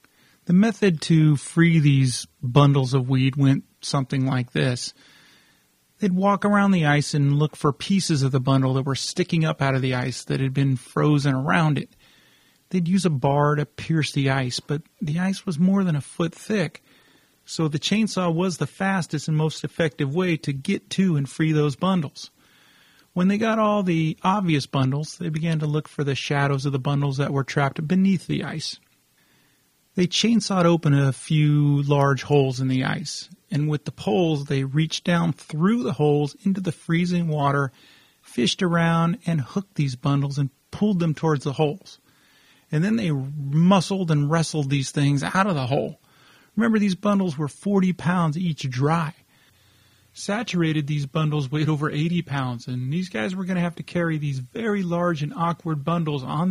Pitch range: 140-180 Hz